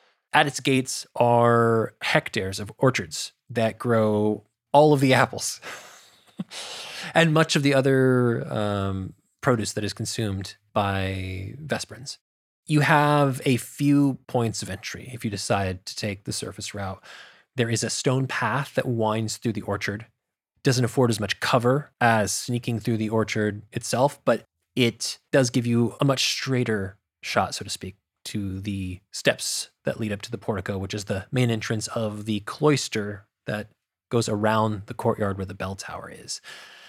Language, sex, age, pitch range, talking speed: English, male, 20-39, 105-130 Hz, 165 wpm